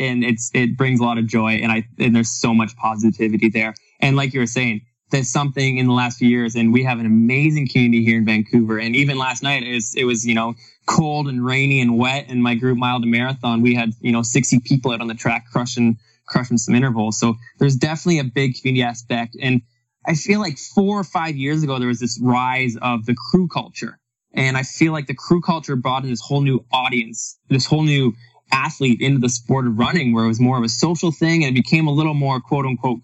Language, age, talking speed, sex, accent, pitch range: English, 20-39, 240 wpm, male, American, 115-140 Hz